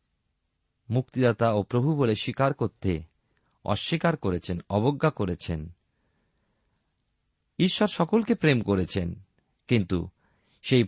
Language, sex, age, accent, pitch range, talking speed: Bengali, male, 50-69, native, 95-140 Hz, 90 wpm